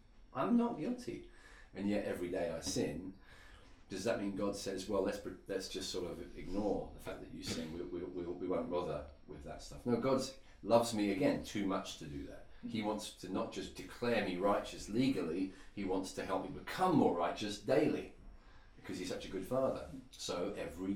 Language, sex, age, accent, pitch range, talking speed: English, male, 40-59, British, 90-110 Hz, 200 wpm